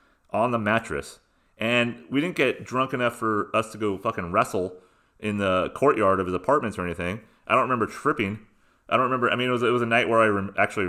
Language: English